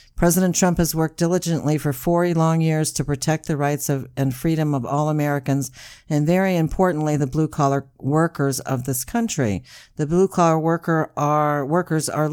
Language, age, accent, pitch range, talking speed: English, 50-69, American, 135-160 Hz, 175 wpm